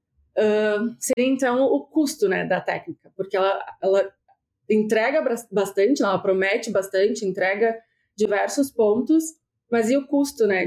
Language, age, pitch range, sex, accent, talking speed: Portuguese, 30-49, 195-245 Hz, female, Brazilian, 135 wpm